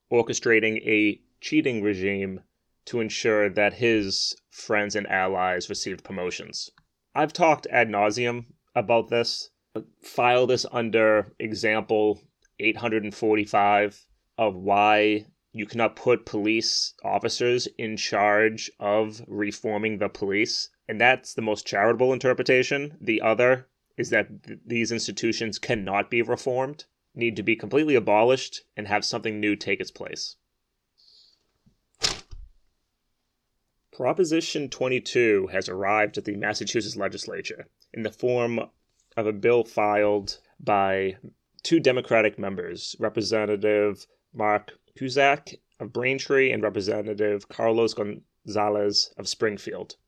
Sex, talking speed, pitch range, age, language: male, 115 wpm, 105-120 Hz, 30-49, English